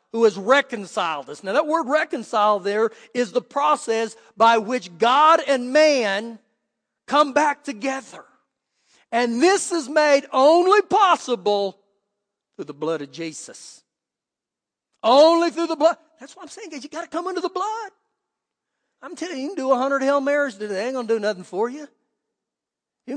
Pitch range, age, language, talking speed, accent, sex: 220-310 Hz, 40-59, English, 175 wpm, American, male